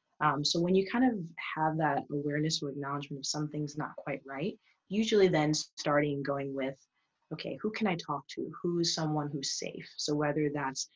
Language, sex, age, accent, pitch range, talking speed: English, female, 20-39, American, 145-165 Hz, 185 wpm